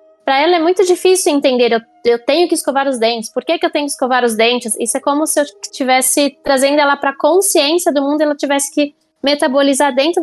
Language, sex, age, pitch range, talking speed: Portuguese, female, 10-29, 240-310 Hz, 240 wpm